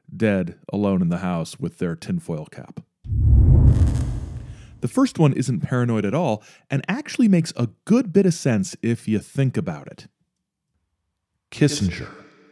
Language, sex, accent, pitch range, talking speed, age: English, male, American, 95-135 Hz, 145 wpm, 40-59